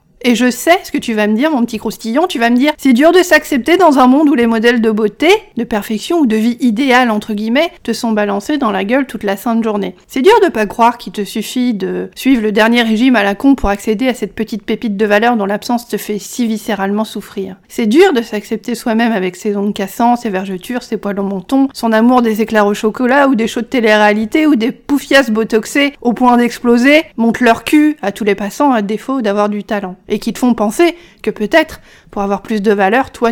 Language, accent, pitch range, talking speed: French, French, 210-260 Hz, 245 wpm